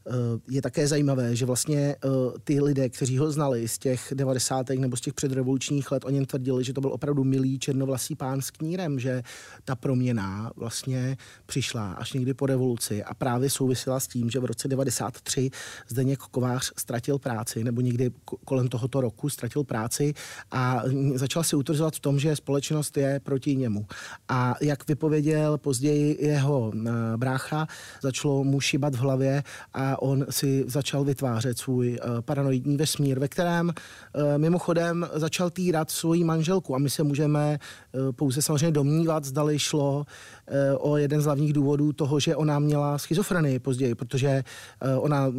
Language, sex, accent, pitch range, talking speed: Czech, male, native, 130-145 Hz, 155 wpm